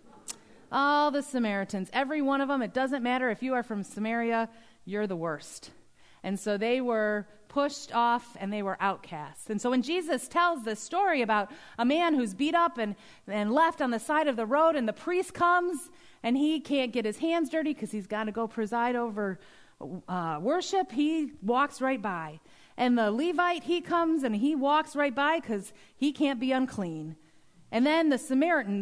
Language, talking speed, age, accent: English, 195 wpm, 30-49, American